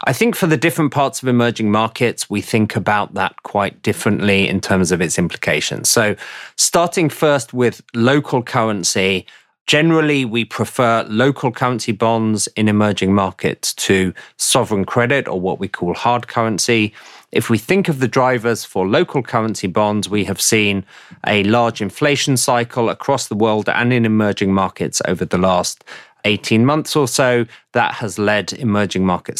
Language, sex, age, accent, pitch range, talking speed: English, male, 30-49, British, 100-125 Hz, 165 wpm